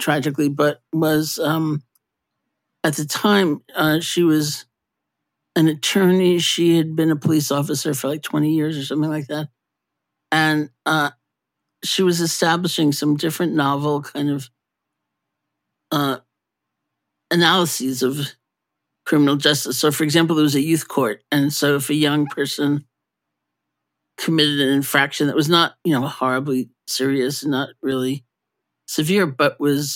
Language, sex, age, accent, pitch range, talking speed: English, male, 50-69, American, 140-155 Hz, 140 wpm